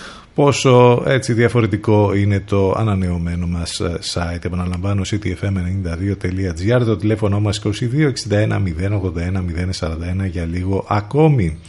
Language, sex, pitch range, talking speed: Greek, male, 95-120 Hz, 90 wpm